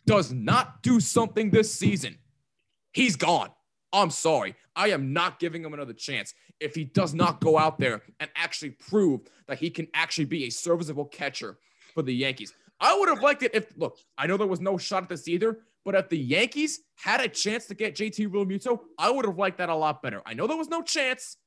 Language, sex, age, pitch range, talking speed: English, male, 20-39, 155-225 Hz, 220 wpm